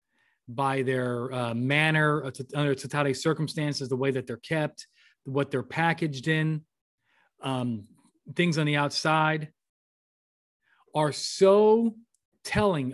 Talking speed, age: 120 wpm, 40-59